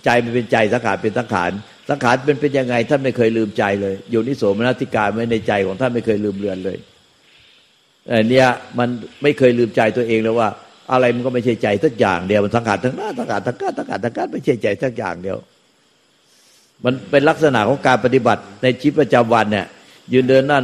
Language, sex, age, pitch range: Thai, male, 60-79, 115-145 Hz